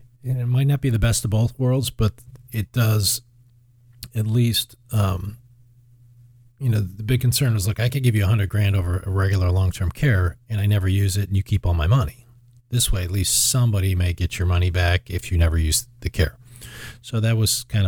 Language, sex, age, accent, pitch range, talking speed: English, male, 40-59, American, 90-120 Hz, 220 wpm